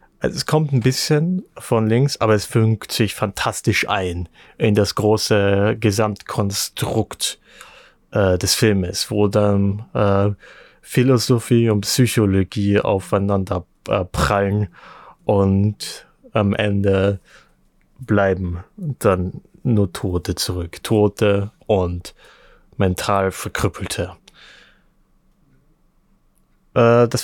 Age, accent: 30-49, German